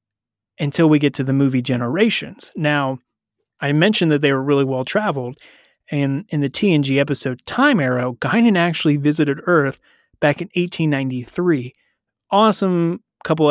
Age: 30-49